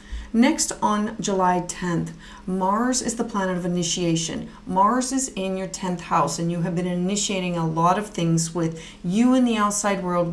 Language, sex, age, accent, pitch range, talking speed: English, female, 40-59, American, 175-220 Hz, 180 wpm